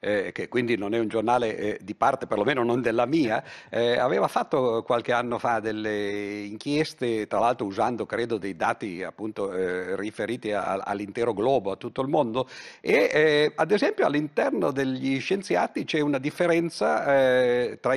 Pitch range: 120-150 Hz